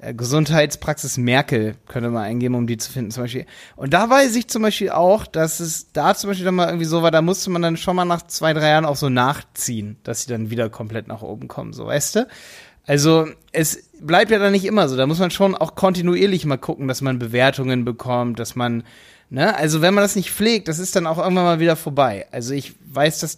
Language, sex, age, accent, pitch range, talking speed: German, male, 30-49, German, 140-185 Hz, 240 wpm